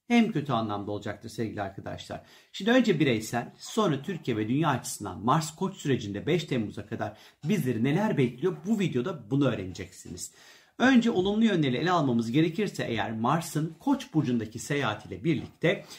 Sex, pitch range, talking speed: male, 130-185 Hz, 150 wpm